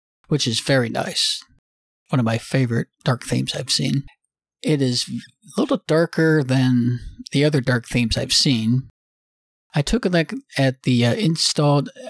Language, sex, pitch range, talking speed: English, male, 120-145 Hz, 160 wpm